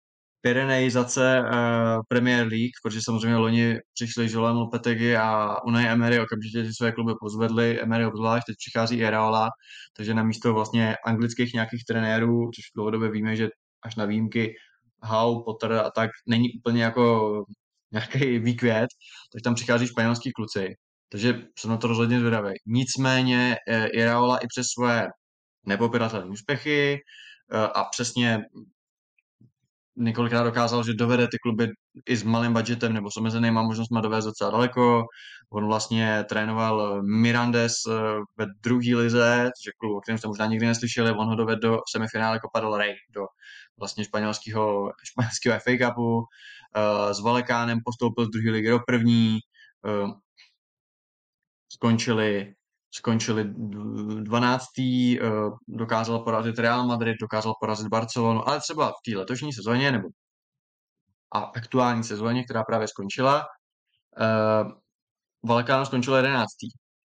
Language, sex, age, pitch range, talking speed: Czech, male, 20-39, 110-120 Hz, 135 wpm